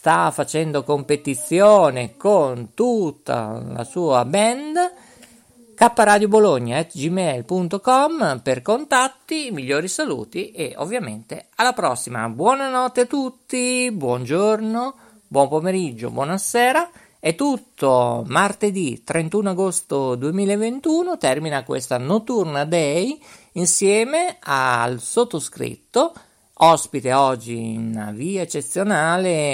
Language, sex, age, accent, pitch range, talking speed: Italian, male, 50-69, native, 140-215 Hz, 85 wpm